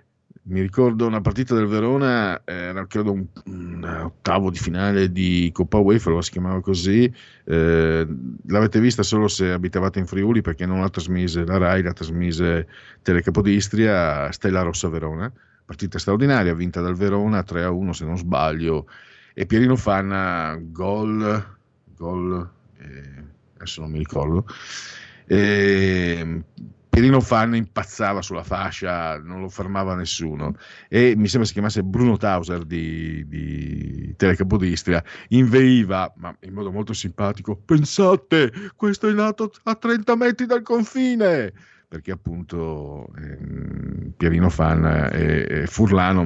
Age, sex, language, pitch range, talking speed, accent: 50-69, male, Italian, 85-115 Hz, 130 wpm, native